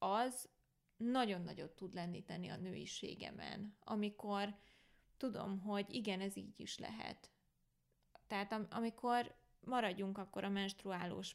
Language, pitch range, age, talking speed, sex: Hungarian, 190-230 Hz, 20-39, 115 wpm, female